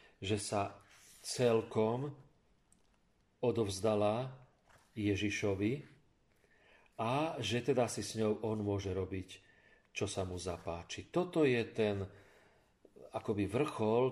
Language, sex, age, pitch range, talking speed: Slovak, male, 40-59, 105-135 Hz, 100 wpm